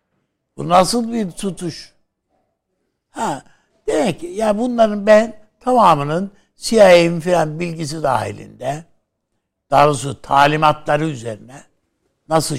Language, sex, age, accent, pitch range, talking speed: Turkish, male, 60-79, native, 150-185 Hz, 90 wpm